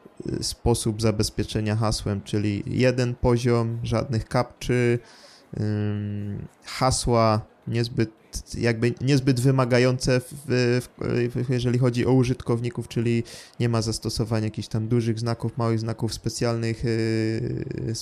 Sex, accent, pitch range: male, native, 110-130 Hz